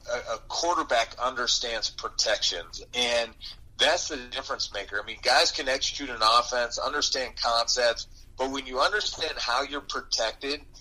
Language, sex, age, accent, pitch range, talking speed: English, male, 30-49, American, 115-140 Hz, 140 wpm